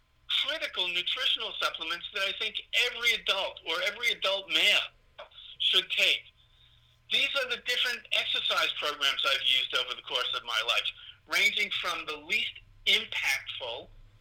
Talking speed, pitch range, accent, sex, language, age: 140 wpm, 175-265 Hz, American, male, English, 50-69